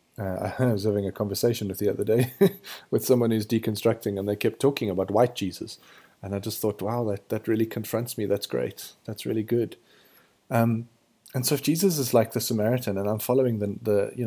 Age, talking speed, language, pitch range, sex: 30-49, 215 wpm, English, 100-125 Hz, male